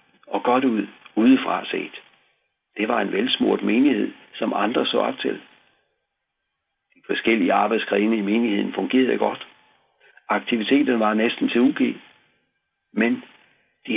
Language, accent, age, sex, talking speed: Danish, native, 60-79, male, 125 wpm